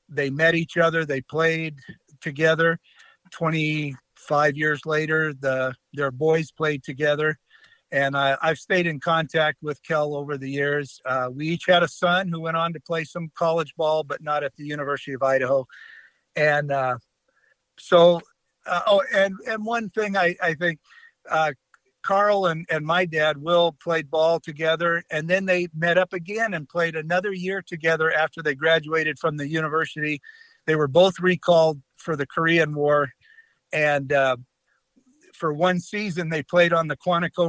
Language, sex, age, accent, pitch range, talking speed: English, male, 50-69, American, 140-170 Hz, 165 wpm